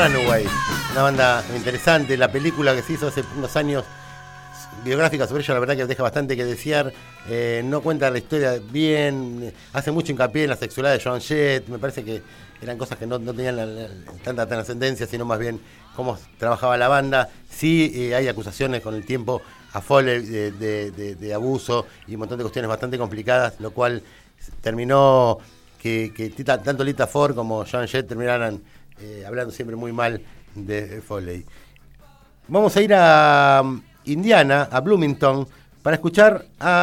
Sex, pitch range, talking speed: male, 120-155 Hz, 175 wpm